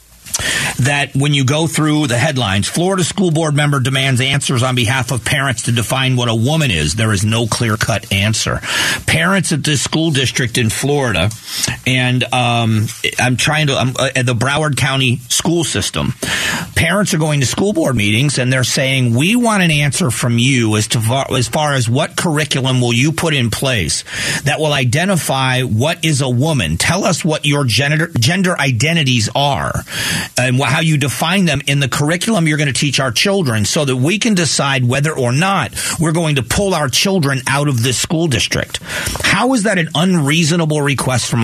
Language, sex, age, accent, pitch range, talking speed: English, male, 40-59, American, 125-160 Hz, 190 wpm